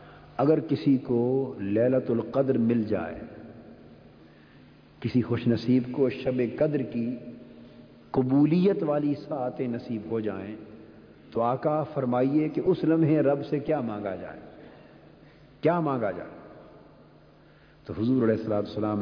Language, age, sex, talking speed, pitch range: Urdu, 50-69, male, 125 wpm, 110-145 Hz